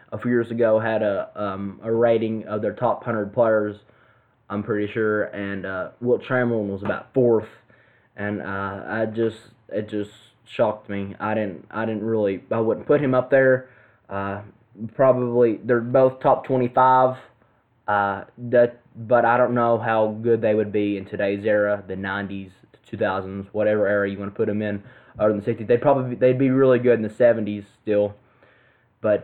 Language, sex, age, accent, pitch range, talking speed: English, male, 20-39, American, 105-120 Hz, 185 wpm